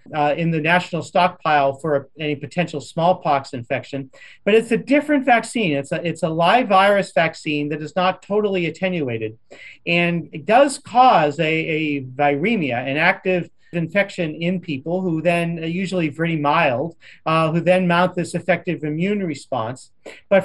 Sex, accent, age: male, American, 40-59